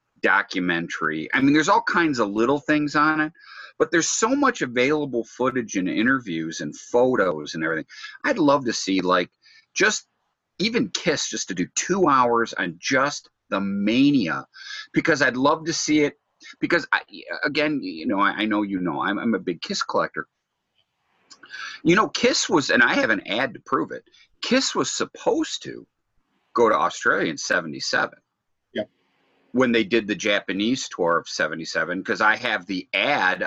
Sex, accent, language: male, American, English